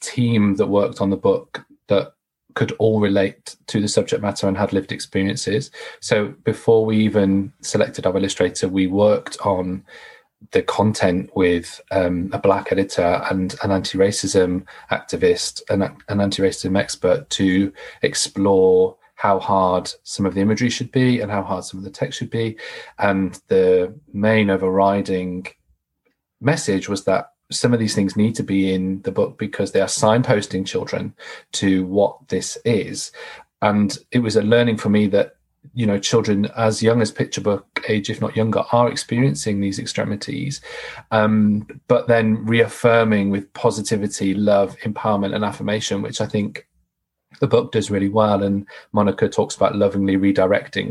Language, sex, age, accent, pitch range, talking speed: English, male, 30-49, British, 100-120 Hz, 160 wpm